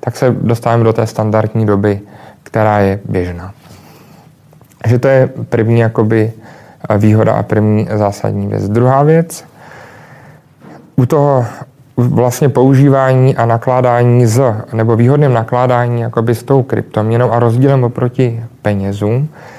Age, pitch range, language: 30-49, 115-135 Hz, Czech